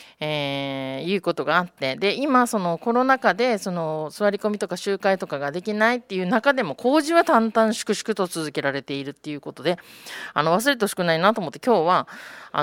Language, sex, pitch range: Japanese, female, 170-235 Hz